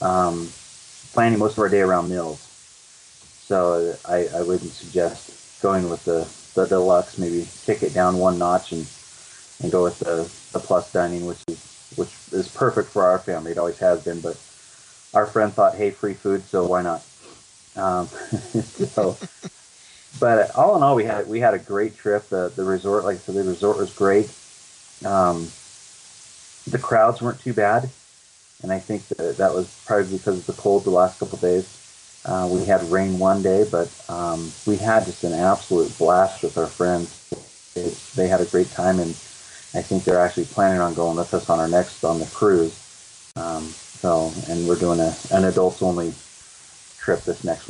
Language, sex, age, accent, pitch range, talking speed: English, male, 30-49, American, 85-100 Hz, 190 wpm